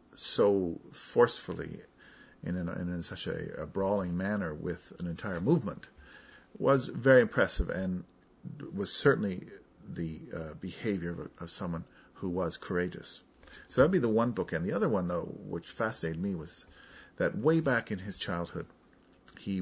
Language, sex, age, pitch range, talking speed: English, male, 50-69, 85-110 Hz, 160 wpm